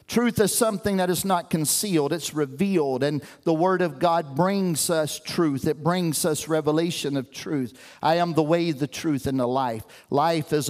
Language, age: English, 50-69